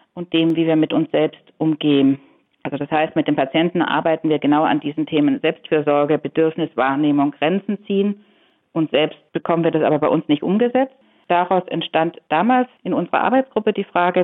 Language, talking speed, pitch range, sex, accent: German, 180 wpm, 160-205 Hz, female, German